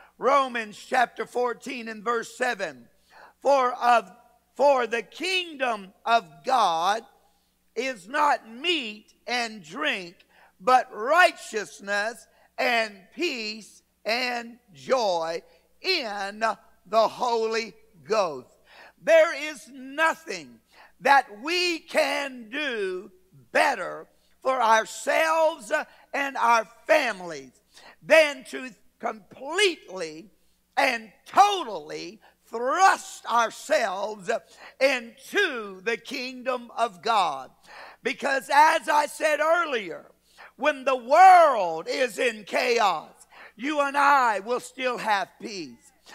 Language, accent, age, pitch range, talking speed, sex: English, American, 60-79, 230-325 Hz, 90 wpm, male